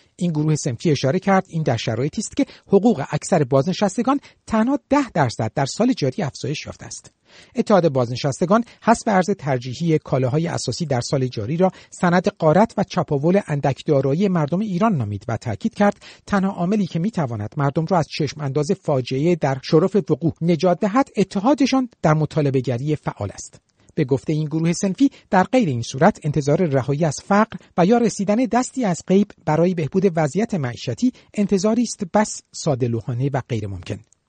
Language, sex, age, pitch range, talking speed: Persian, male, 50-69, 140-200 Hz, 165 wpm